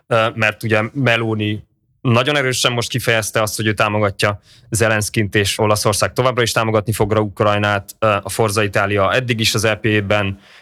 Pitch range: 100-120 Hz